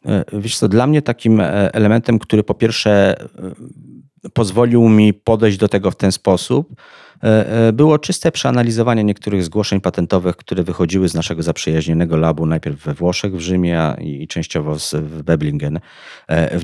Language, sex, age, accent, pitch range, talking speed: Polish, male, 40-59, native, 85-110 Hz, 140 wpm